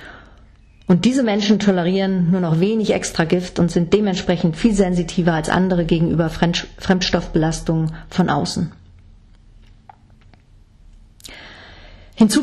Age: 40-59